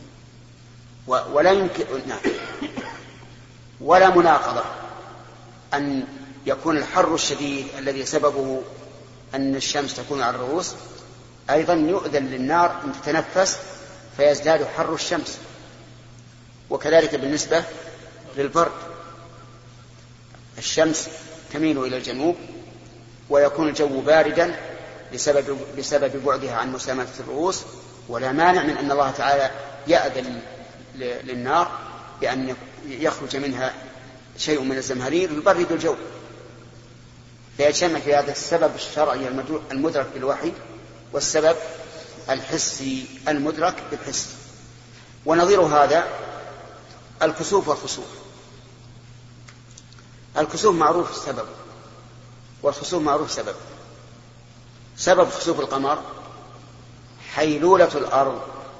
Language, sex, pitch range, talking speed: Arabic, male, 125-155 Hz, 80 wpm